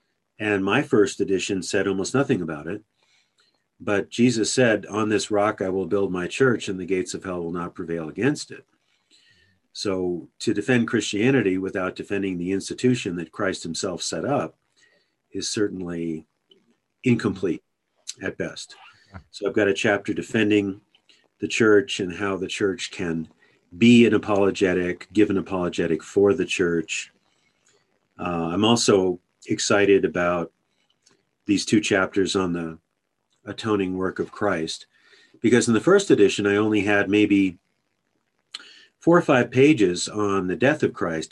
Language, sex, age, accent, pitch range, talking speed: English, male, 50-69, American, 90-105 Hz, 150 wpm